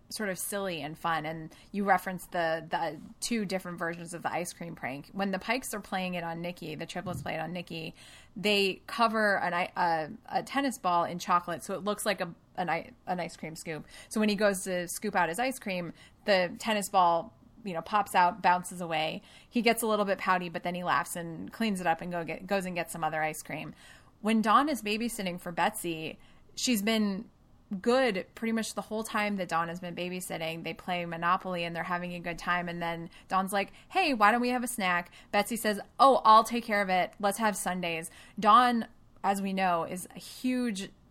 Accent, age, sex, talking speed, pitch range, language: American, 30-49, female, 220 wpm, 175-220 Hz, English